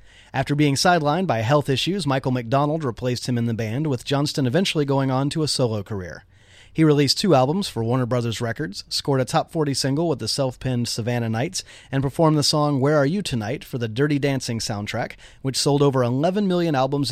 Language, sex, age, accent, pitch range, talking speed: English, male, 30-49, American, 120-145 Hz, 205 wpm